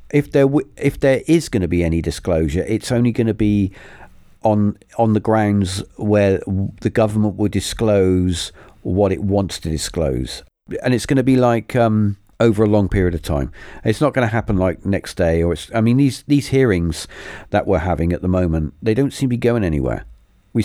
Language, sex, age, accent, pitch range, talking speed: English, male, 50-69, British, 95-130 Hz, 210 wpm